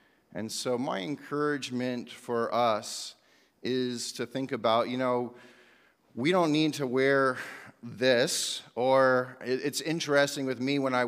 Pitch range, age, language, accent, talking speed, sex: 115-135 Hz, 40-59, English, American, 135 wpm, male